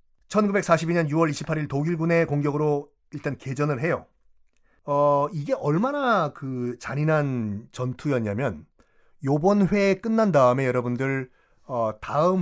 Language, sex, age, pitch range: Korean, male, 30-49, 125-165 Hz